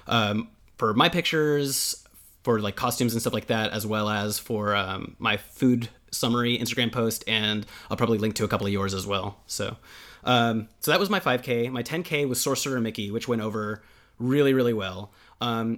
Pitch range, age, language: 105-135 Hz, 30-49, English